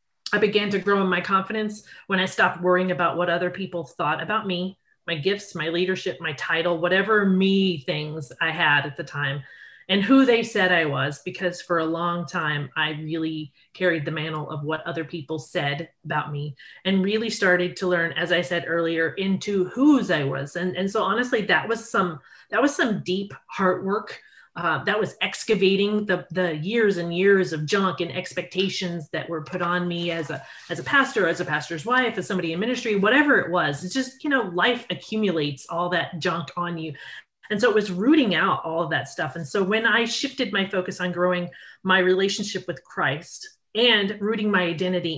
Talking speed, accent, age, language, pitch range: 205 wpm, American, 30-49, English, 170-210 Hz